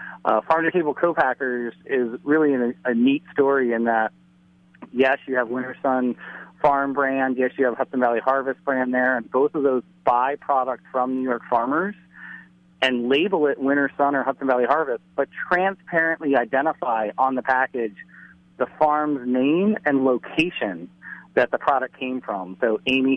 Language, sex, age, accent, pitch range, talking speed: English, male, 40-59, American, 125-155 Hz, 165 wpm